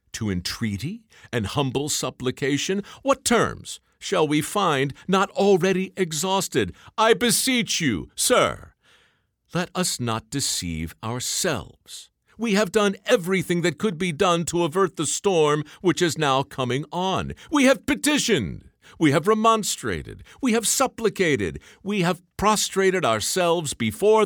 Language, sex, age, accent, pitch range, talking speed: English, male, 60-79, American, 145-215 Hz, 130 wpm